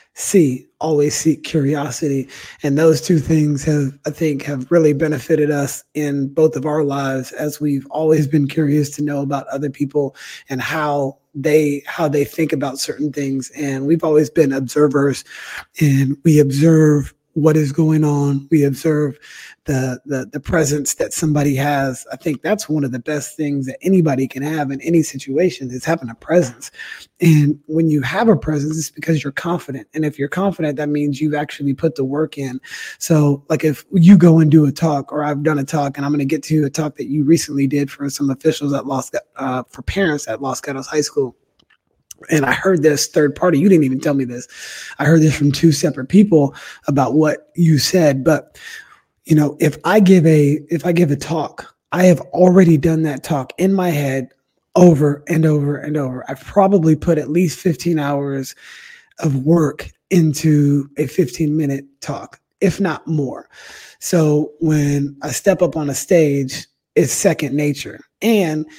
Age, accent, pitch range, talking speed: 30-49, American, 140-160 Hz, 190 wpm